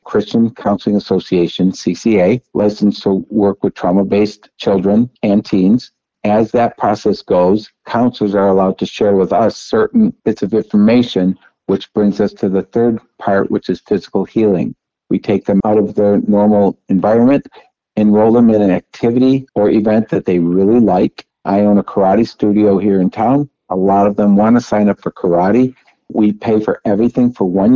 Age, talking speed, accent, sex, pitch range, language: 60-79, 175 wpm, American, male, 95-110 Hz, English